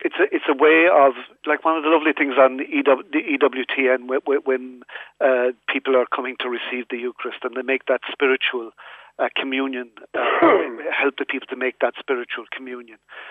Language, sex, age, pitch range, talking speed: English, male, 50-69, 135-170 Hz, 195 wpm